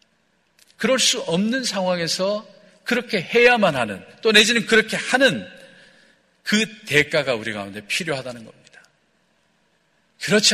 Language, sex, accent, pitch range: Korean, male, native, 150-210 Hz